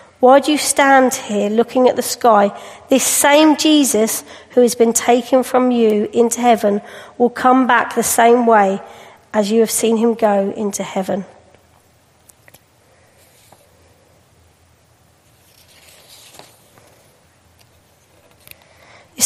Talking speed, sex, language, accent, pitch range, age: 110 wpm, female, English, British, 210-270 Hz, 40-59